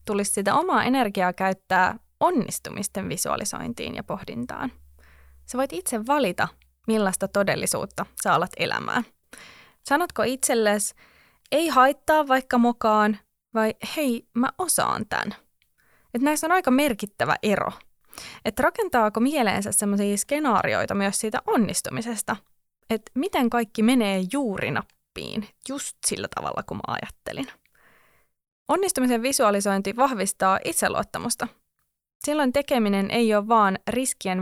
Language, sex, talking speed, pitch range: Finnish, female, 110 wpm, 205-265 Hz